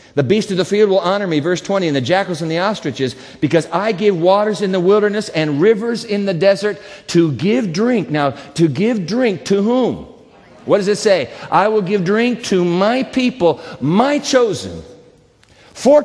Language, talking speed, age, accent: English, 190 wpm, 50-69, American